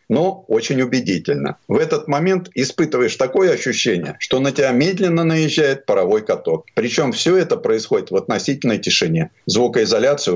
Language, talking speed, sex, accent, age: Russian, 140 wpm, male, native, 50-69